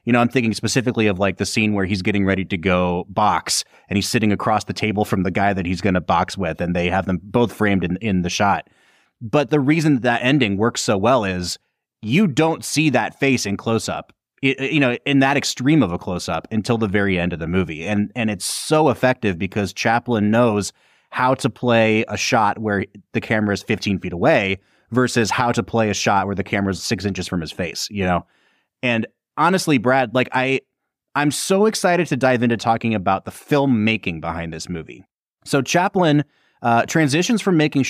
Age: 30-49